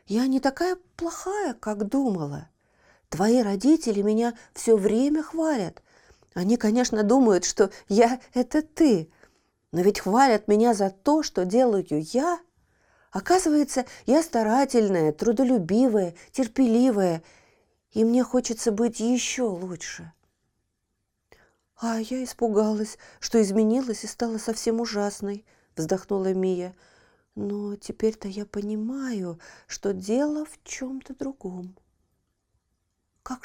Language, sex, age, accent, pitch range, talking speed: Russian, female, 40-59, native, 195-260 Hz, 110 wpm